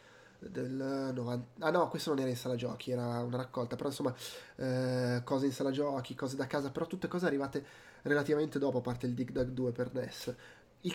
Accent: native